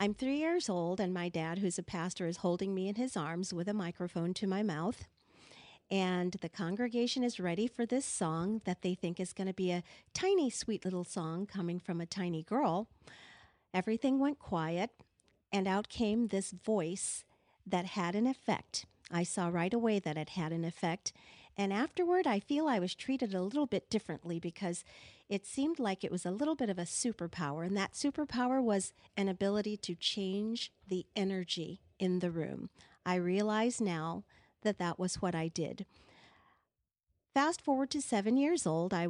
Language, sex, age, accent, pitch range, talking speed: English, female, 50-69, American, 175-225 Hz, 185 wpm